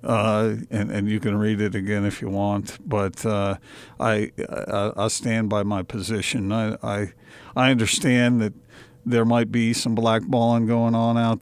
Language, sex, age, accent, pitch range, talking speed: English, male, 50-69, American, 105-125 Hz, 175 wpm